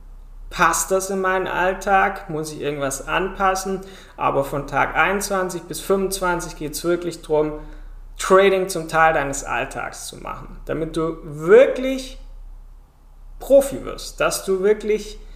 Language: German